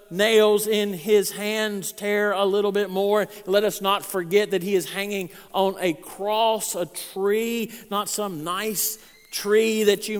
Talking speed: 165 wpm